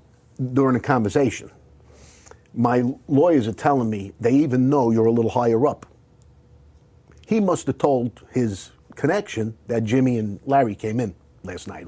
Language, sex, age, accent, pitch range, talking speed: English, male, 50-69, American, 110-140 Hz, 150 wpm